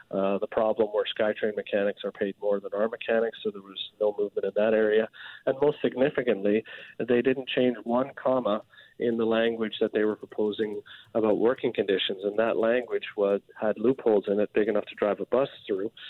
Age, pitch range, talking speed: 40-59, 105-140 Hz, 195 wpm